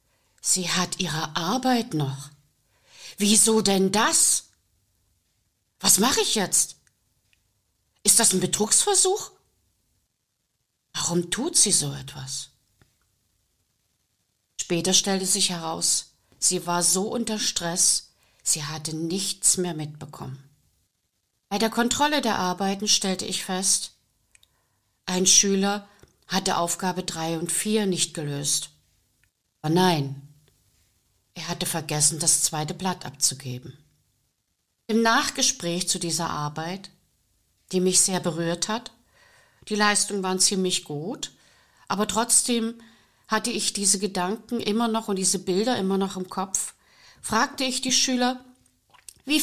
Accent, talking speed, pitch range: German, 115 wpm, 135-200 Hz